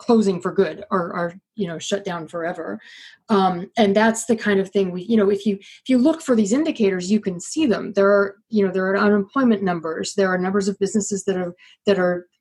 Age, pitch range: 30-49, 180-230 Hz